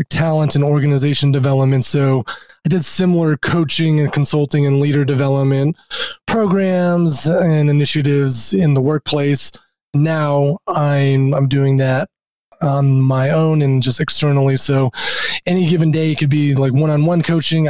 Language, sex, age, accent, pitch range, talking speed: English, male, 20-39, American, 140-155 Hz, 140 wpm